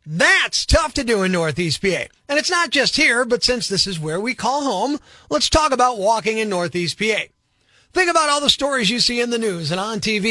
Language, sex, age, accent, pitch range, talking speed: English, male, 30-49, American, 220-300 Hz, 235 wpm